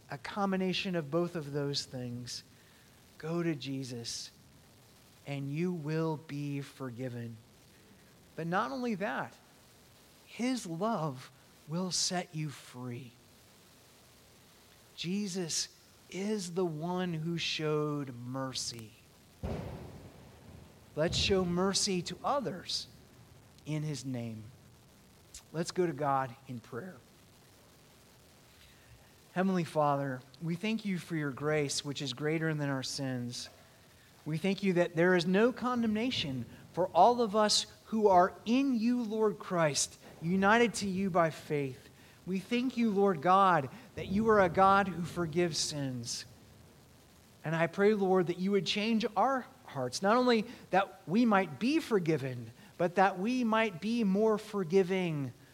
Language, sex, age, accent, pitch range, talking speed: English, male, 30-49, American, 130-195 Hz, 130 wpm